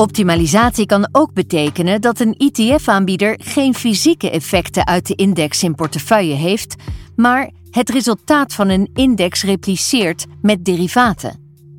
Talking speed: 125 wpm